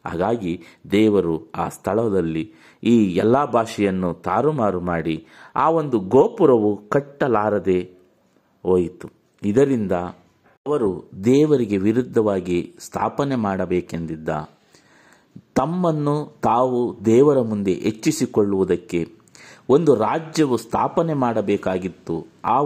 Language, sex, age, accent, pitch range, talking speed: Kannada, male, 50-69, native, 95-130 Hz, 80 wpm